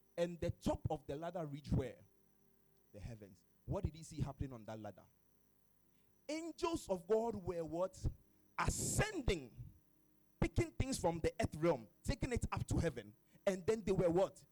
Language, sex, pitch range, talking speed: English, male, 105-165 Hz, 165 wpm